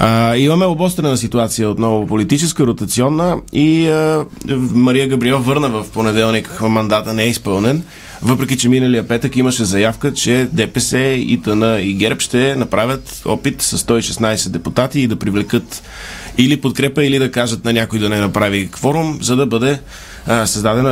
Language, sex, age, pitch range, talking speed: Bulgarian, male, 20-39, 110-140 Hz, 160 wpm